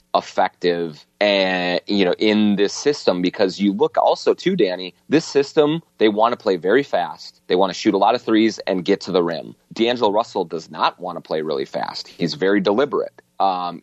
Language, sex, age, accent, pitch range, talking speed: English, male, 30-49, American, 95-115 Hz, 205 wpm